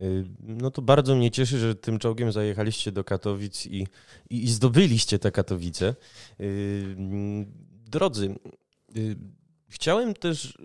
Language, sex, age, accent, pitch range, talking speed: Polish, male, 20-39, native, 100-125 Hz, 115 wpm